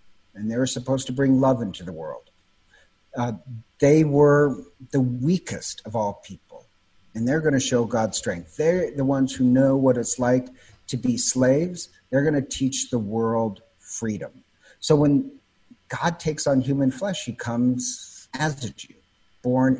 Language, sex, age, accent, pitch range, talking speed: English, male, 50-69, American, 115-145 Hz, 170 wpm